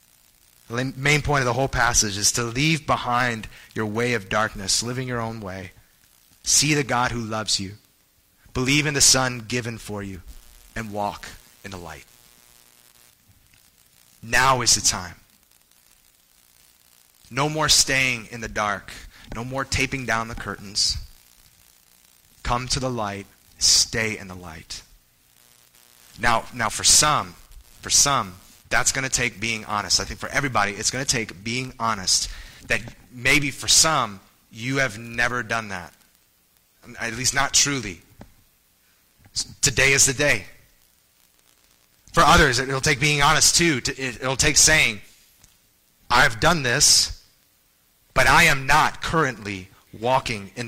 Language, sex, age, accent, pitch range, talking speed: English, male, 30-49, American, 90-130 Hz, 140 wpm